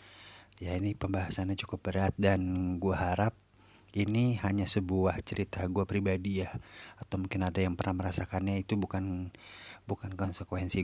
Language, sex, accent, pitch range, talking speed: Indonesian, male, native, 95-110 Hz, 140 wpm